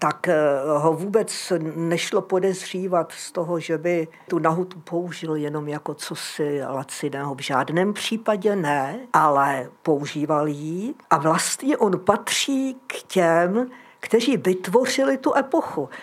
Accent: native